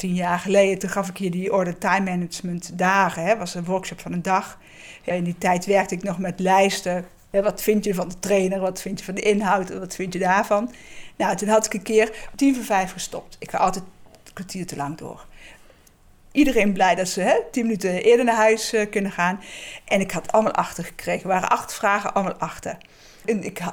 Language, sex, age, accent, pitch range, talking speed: Dutch, female, 50-69, Dutch, 180-210 Hz, 220 wpm